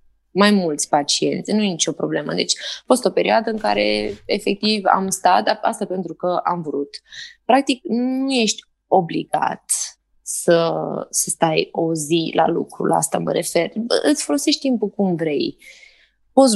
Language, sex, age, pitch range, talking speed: Romanian, female, 20-39, 160-205 Hz, 160 wpm